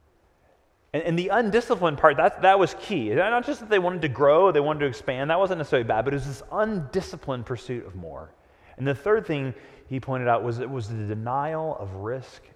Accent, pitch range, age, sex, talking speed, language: American, 120-165 Hz, 30-49, male, 215 wpm, English